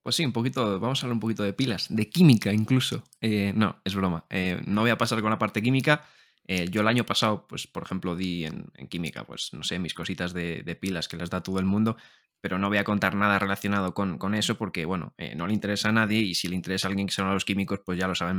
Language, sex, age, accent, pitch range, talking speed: Spanish, male, 20-39, Spanish, 100-120 Hz, 280 wpm